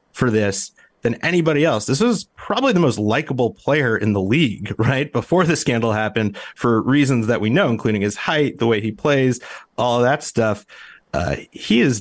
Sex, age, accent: male, 30-49, American